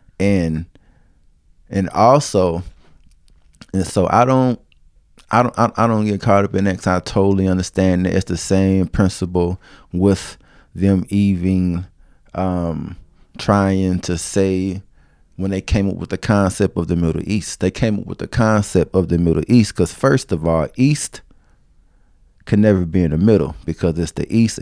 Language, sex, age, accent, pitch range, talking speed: English, male, 20-39, American, 90-110 Hz, 165 wpm